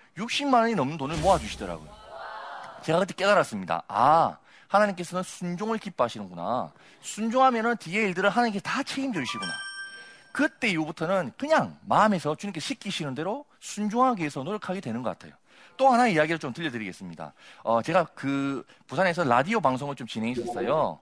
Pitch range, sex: 135-210 Hz, male